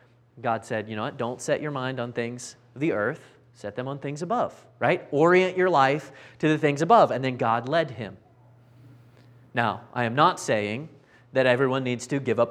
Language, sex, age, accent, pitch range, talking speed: English, male, 30-49, American, 120-150 Hz, 205 wpm